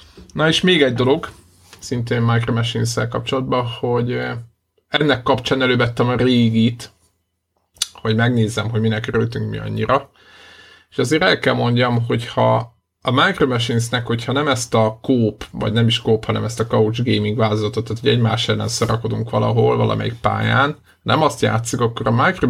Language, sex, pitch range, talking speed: Hungarian, male, 110-130 Hz, 160 wpm